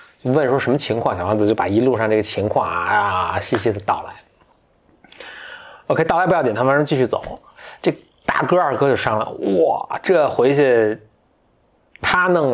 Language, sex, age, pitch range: Chinese, male, 20-39, 105-135 Hz